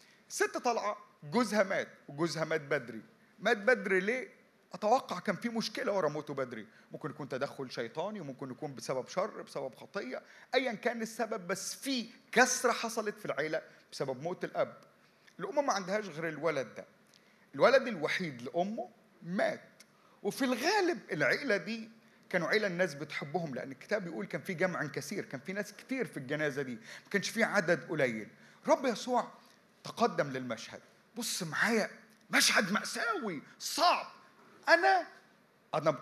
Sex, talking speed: male, 145 wpm